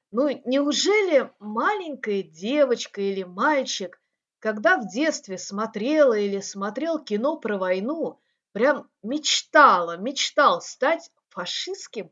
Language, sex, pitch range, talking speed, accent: Russian, female, 220-295 Hz, 100 wpm, native